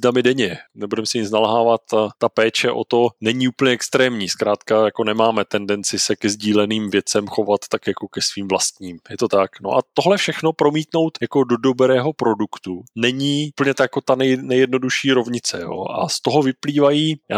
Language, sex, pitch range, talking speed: Czech, male, 105-130 Hz, 185 wpm